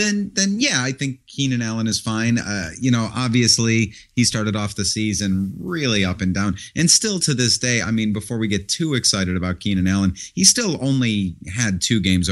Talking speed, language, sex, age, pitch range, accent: 210 wpm, English, male, 30-49, 95-120 Hz, American